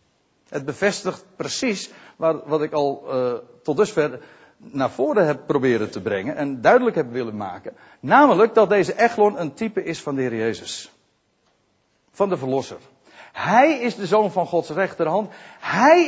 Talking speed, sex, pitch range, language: 160 wpm, male, 160-235 Hz, Dutch